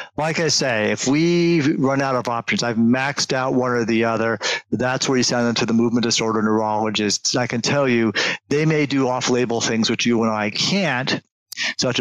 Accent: American